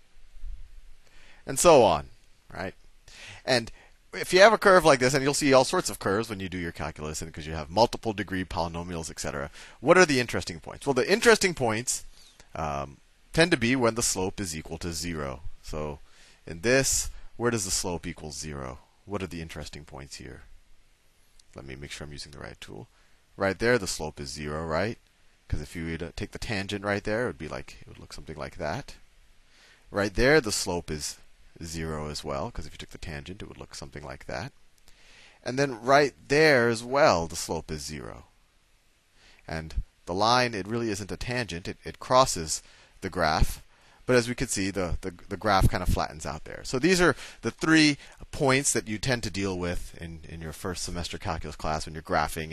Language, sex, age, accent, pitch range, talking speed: English, male, 30-49, American, 80-115 Hz, 210 wpm